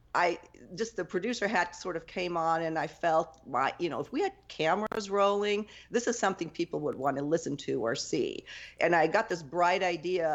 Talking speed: 215 wpm